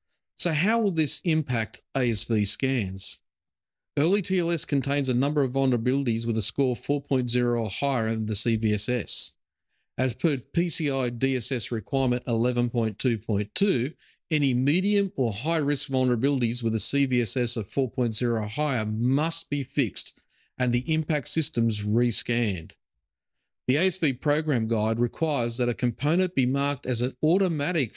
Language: English